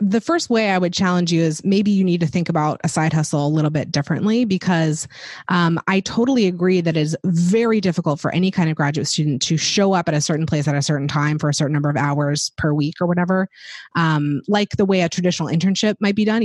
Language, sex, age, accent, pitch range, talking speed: English, female, 20-39, American, 155-205 Hz, 250 wpm